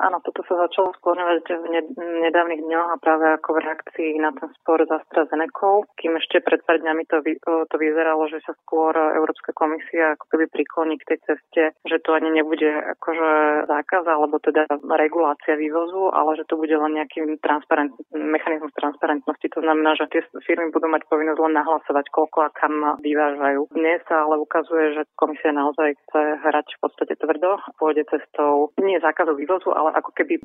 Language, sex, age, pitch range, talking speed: Slovak, female, 30-49, 150-160 Hz, 175 wpm